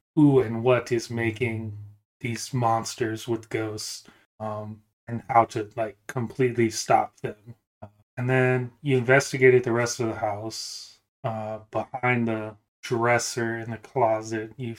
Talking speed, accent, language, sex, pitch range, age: 140 wpm, American, English, male, 115-130 Hz, 20-39